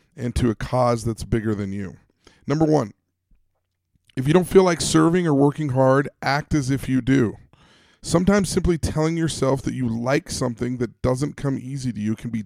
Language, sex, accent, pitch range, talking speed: English, male, American, 120-150 Hz, 195 wpm